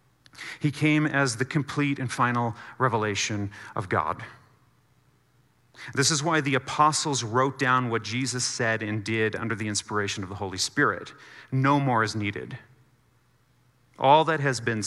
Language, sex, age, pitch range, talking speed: English, male, 40-59, 115-140 Hz, 150 wpm